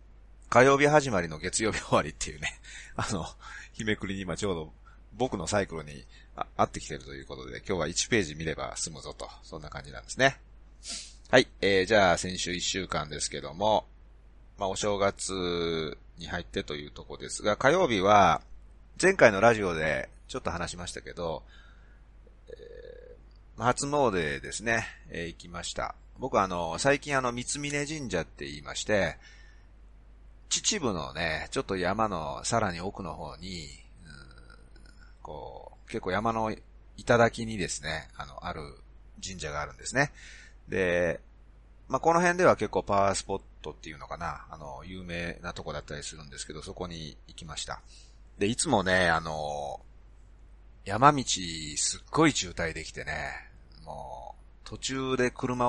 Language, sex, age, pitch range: Japanese, male, 30-49, 80-115 Hz